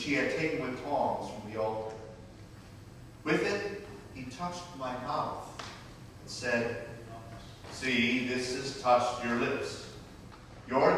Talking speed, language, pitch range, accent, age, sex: 125 wpm, English, 110-150 Hz, American, 40-59, male